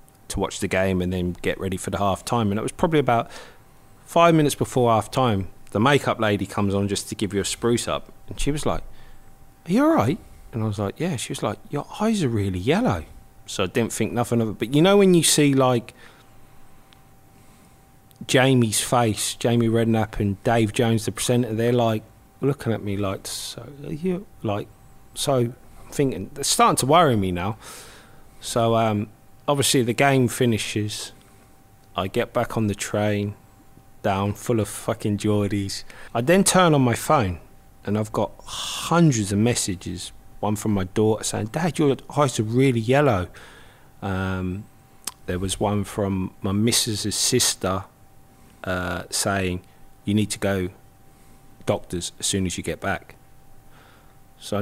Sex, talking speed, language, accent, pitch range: male, 175 wpm, English, British, 100-130 Hz